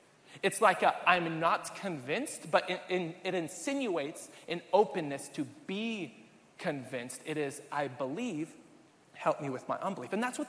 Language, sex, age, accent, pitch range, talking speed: English, male, 30-49, American, 190-255 Hz, 165 wpm